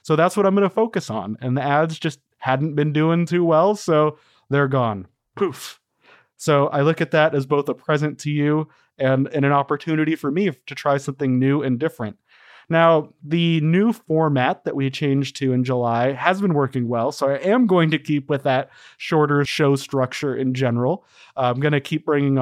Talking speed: 205 wpm